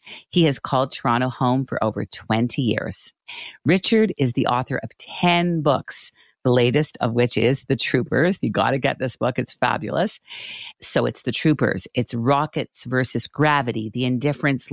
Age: 40-59